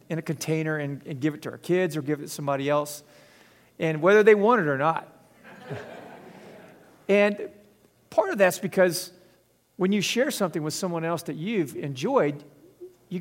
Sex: male